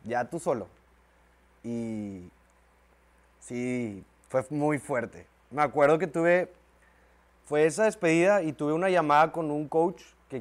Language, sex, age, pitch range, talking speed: English, male, 20-39, 105-145 Hz, 135 wpm